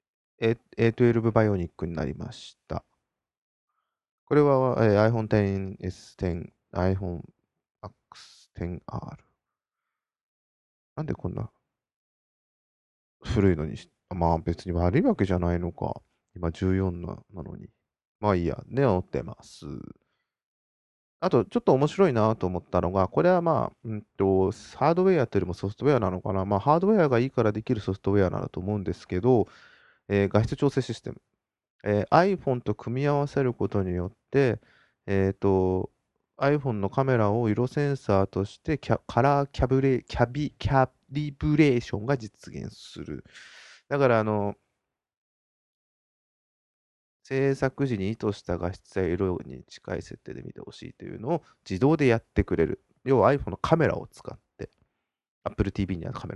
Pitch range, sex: 90-130 Hz, male